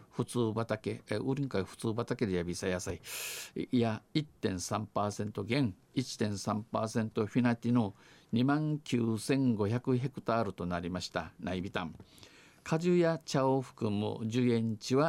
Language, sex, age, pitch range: Japanese, male, 50-69, 100-125 Hz